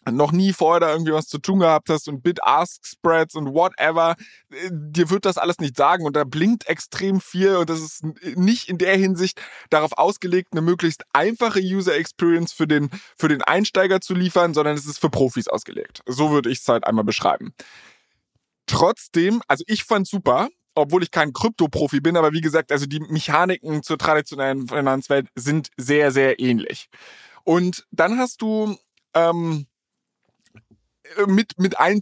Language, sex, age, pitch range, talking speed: German, male, 20-39, 145-180 Hz, 170 wpm